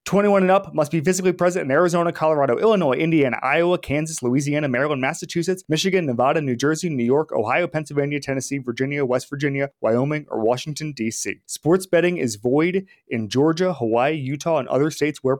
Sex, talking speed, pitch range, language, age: male, 175 wpm, 130-175 Hz, English, 30-49